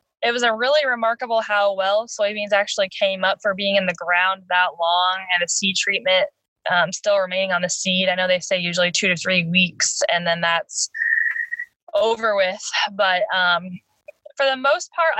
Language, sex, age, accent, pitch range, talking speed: English, female, 10-29, American, 185-235 Hz, 190 wpm